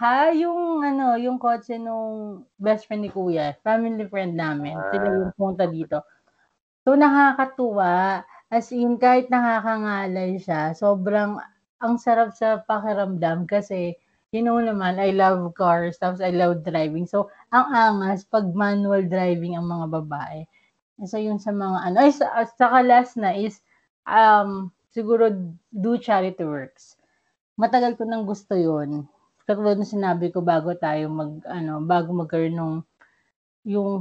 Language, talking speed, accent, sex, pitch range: English, 140 wpm, Filipino, female, 175-220 Hz